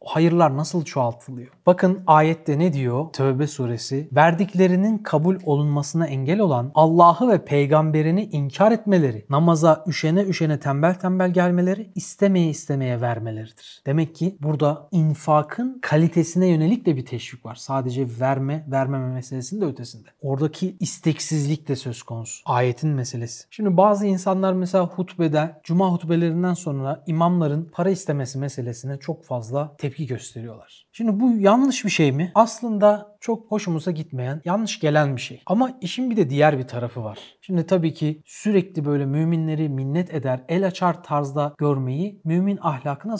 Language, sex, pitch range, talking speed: Turkish, male, 145-180 Hz, 145 wpm